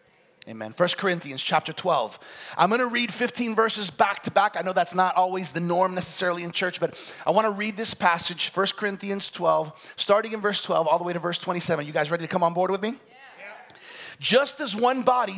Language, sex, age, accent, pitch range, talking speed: English, male, 30-49, American, 175-240 Hz, 220 wpm